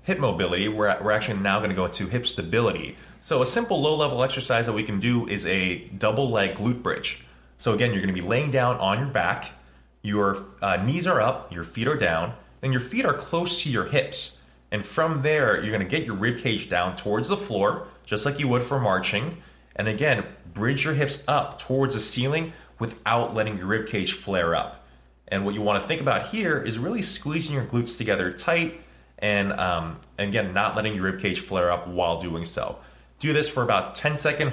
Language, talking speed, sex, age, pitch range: English, 210 wpm, male, 30-49, 90-130 Hz